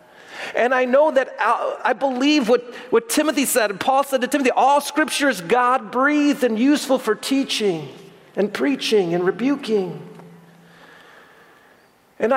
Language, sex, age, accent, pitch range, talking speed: English, male, 40-59, American, 205-270 Hz, 130 wpm